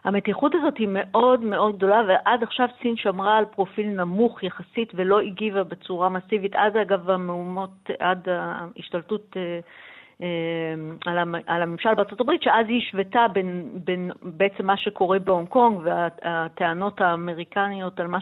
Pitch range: 180-225 Hz